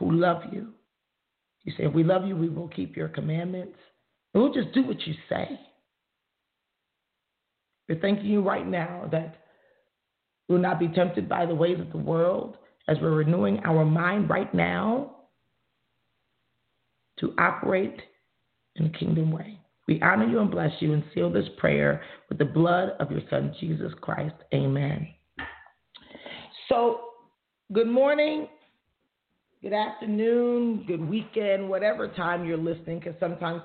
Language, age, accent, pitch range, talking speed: English, 40-59, American, 160-190 Hz, 145 wpm